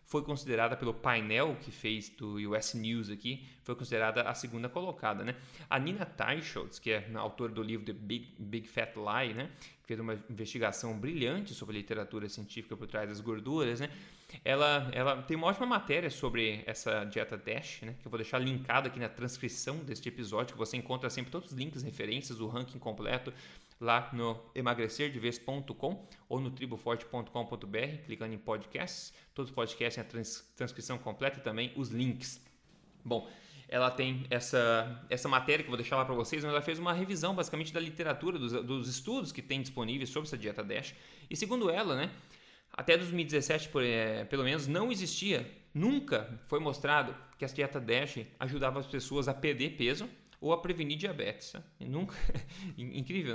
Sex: male